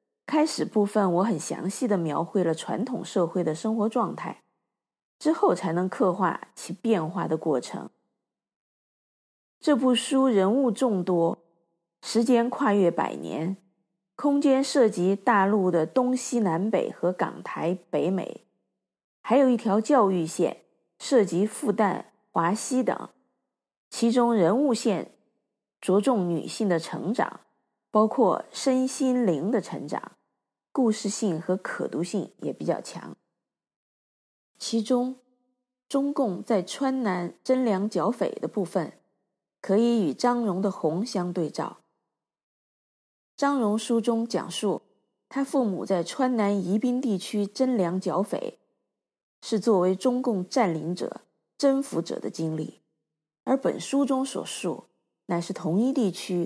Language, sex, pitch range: Chinese, female, 180-250 Hz